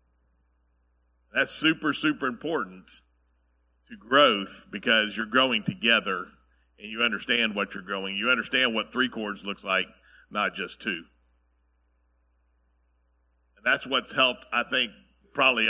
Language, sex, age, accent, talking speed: English, male, 50-69, American, 125 wpm